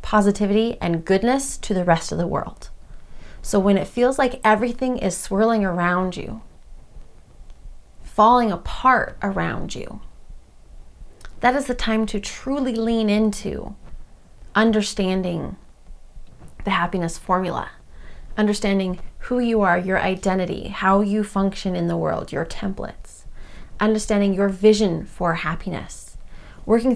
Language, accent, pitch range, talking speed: English, American, 175-210 Hz, 120 wpm